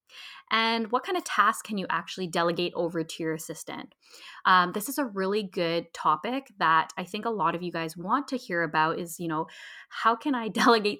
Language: English